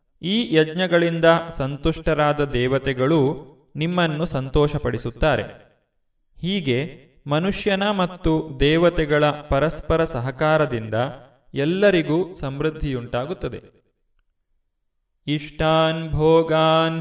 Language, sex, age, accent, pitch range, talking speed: Kannada, male, 30-49, native, 130-160 Hz, 55 wpm